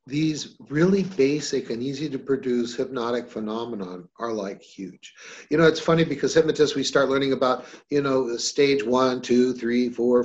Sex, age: male, 50-69